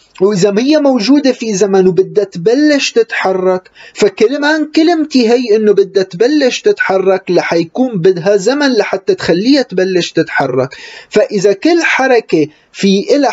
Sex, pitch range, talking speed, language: male, 160-230 Hz, 120 wpm, Arabic